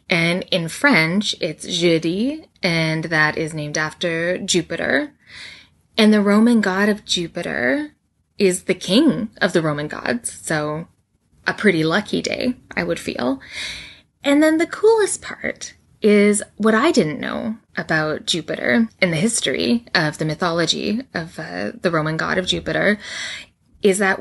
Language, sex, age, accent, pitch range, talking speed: English, female, 10-29, American, 165-230 Hz, 145 wpm